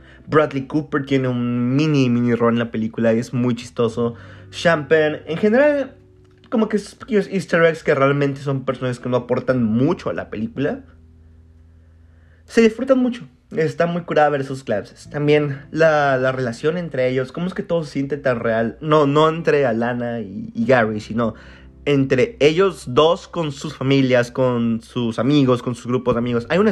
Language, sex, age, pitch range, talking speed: Spanish, male, 30-49, 120-160 Hz, 180 wpm